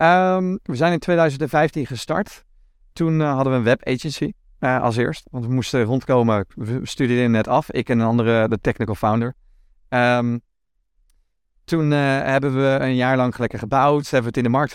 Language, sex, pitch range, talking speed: Dutch, male, 110-135 Hz, 175 wpm